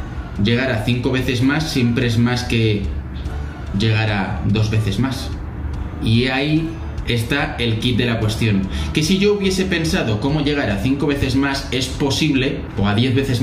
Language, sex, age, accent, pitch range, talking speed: Spanish, male, 20-39, Spanish, 110-140 Hz, 175 wpm